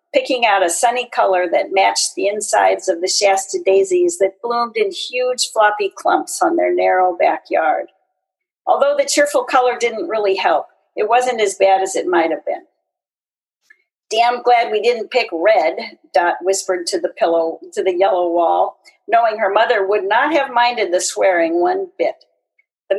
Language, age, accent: English, 40-59, American